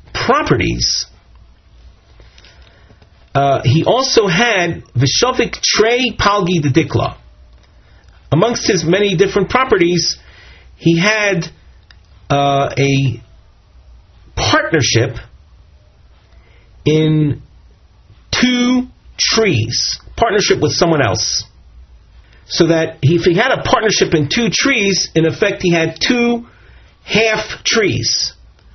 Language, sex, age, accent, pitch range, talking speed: English, male, 40-59, American, 115-175 Hz, 90 wpm